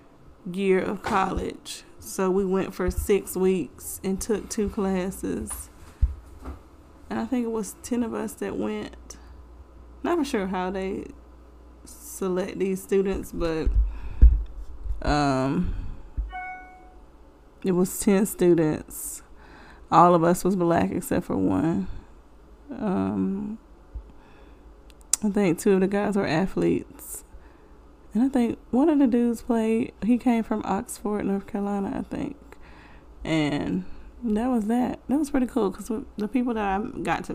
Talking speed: 135 wpm